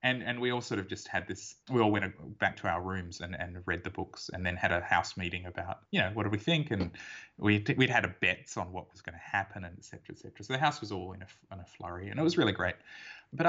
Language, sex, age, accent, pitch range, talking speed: English, male, 20-39, Australian, 95-115 Hz, 300 wpm